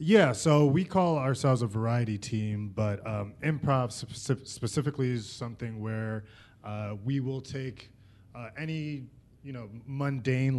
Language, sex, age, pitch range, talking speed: English, male, 20-39, 110-130 Hz, 140 wpm